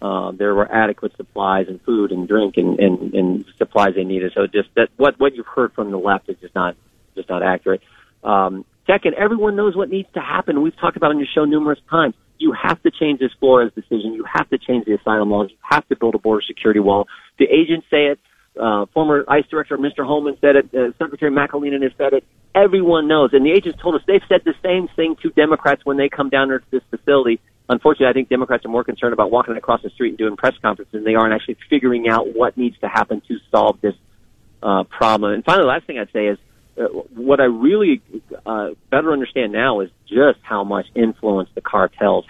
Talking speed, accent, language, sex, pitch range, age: 235 wpm, American, English, male, 105-145 Hz, 40-59